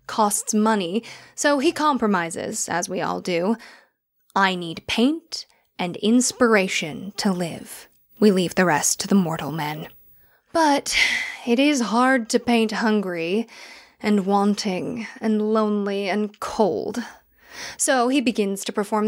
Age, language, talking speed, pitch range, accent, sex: 10-29, English, 130 wpm, 190-240 Hz, American, female